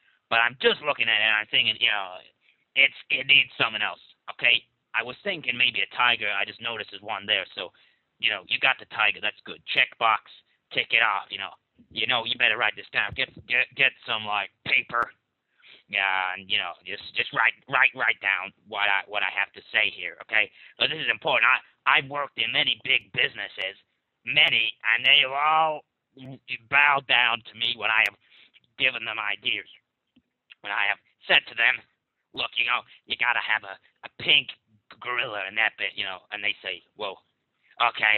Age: 40-59